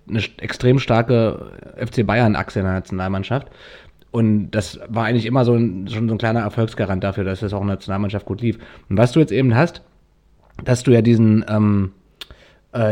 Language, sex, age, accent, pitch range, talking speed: German, male, 30-49, German, 110-135 Hz, 190 wpm